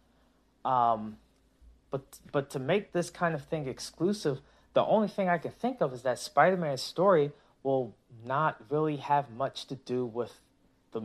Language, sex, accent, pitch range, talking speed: English, male, American, 125-185 Hz, 165 wpm